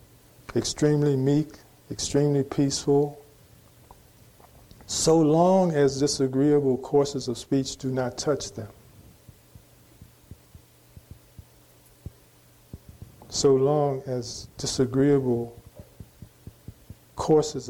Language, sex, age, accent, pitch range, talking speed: English, male, 50-69, American, 115-140 Hz, 70 wpm